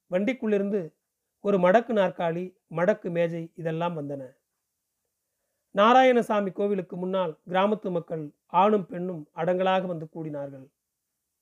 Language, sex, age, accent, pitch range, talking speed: Tamil, male, 40-59, native, 165-210 Hz, 95 wpm